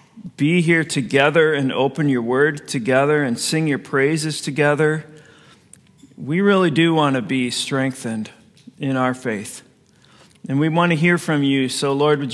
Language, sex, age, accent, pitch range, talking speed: English, male, 40-59, American, 140-190 Hz, 160 wpm